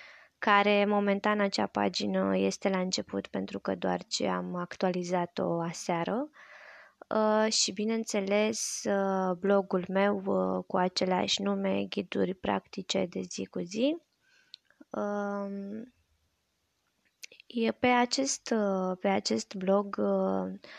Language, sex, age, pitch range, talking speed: Romanian, female, 20-39, 180-220 Hz, 90 wpm